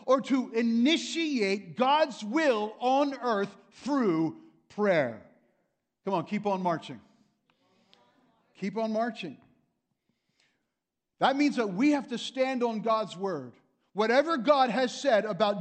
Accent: American